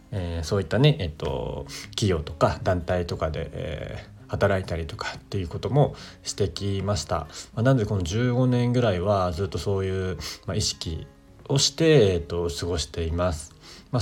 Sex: male